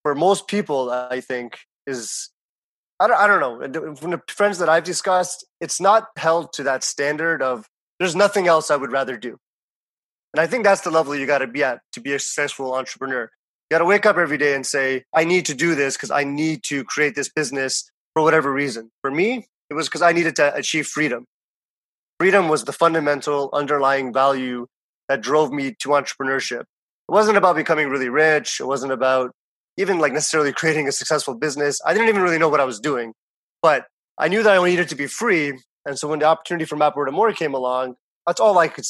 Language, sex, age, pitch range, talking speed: English, male, 30-49, 135-165 Hz, 210 wpm